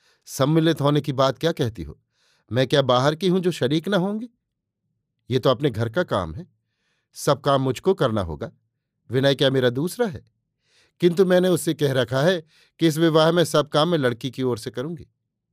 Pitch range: 130-160 Hz